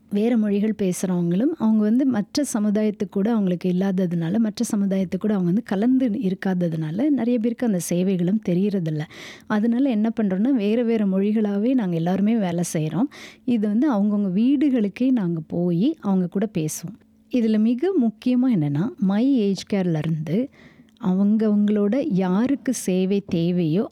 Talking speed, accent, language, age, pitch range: 125 wpm, native, Tamil, 30-49, 175-225 Hz